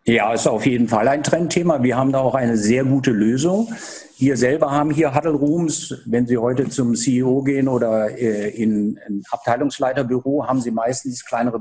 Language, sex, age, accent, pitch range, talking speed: German, male, 50-69, German, 125-165 Hz, 180 wpm